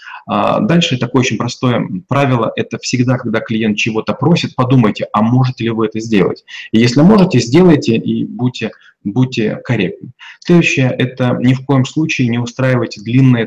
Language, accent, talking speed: Russian, native, 155 wpm